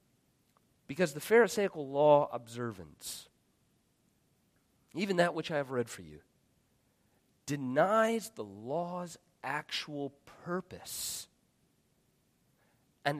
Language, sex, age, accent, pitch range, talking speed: English, male, 40-59, American, 135-180 Hz, 85 wpm